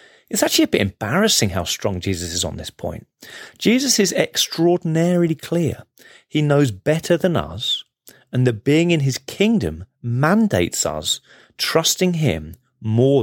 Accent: British